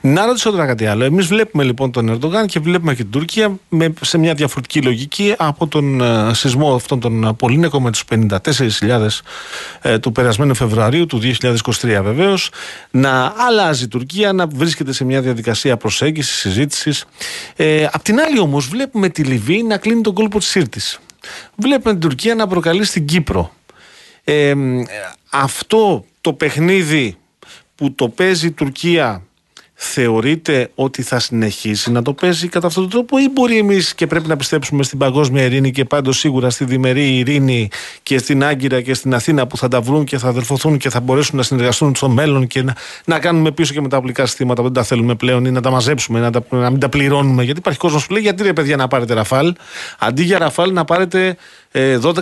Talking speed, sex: 185 wpm, male